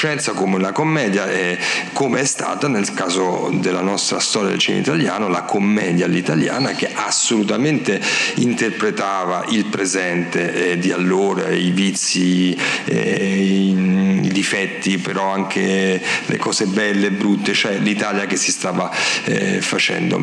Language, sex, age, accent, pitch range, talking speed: Italian, male, 40-59, native, 95-110 Hz, 125 wpm